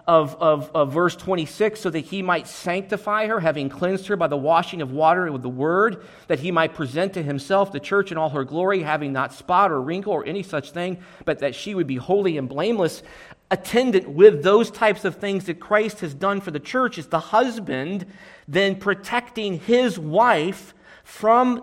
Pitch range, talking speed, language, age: 180-235 Hz, 195 wpm, English, 40-59